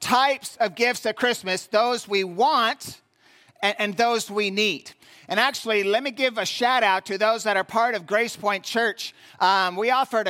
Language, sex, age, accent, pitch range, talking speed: English, male, 40-59, American, 195-240 Hz, 190 wpm